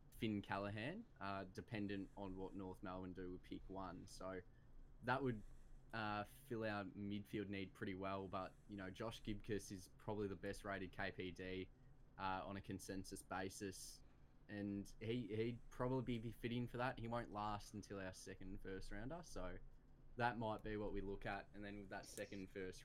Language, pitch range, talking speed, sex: English, 95-110 Hz, 175 wpm, male